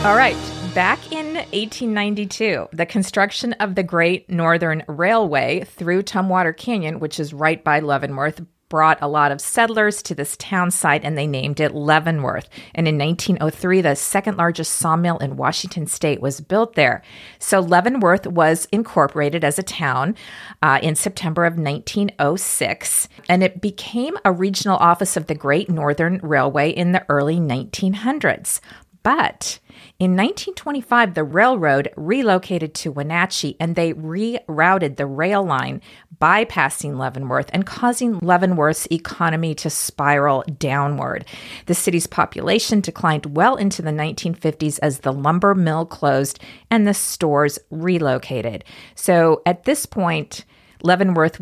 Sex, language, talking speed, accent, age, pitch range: female, English, 140 wpm, American, 40-59, 150-195 Hz